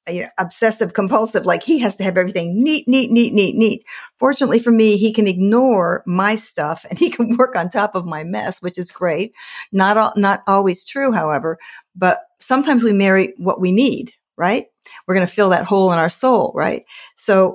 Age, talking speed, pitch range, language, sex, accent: 60-79, 205 wpm, 175-220 Hz, English, female, American